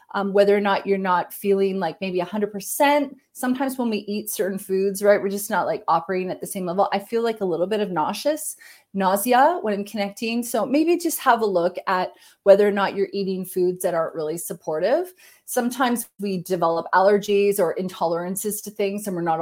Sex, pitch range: female, 180-230 Hz